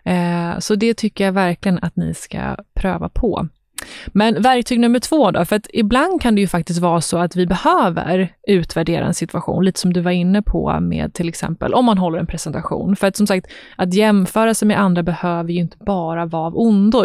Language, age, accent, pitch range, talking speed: English, 20-39, Swedish, 175-210 Hz, 210 wpm